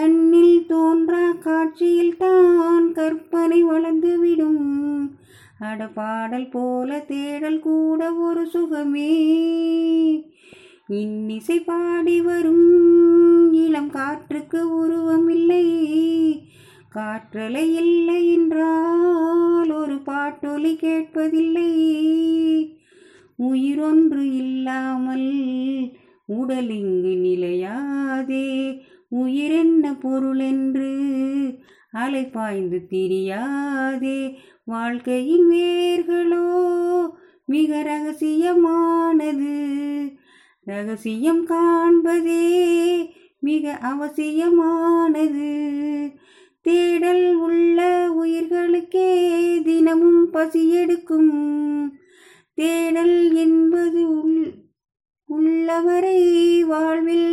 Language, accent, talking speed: Tamil, native, 55 wpm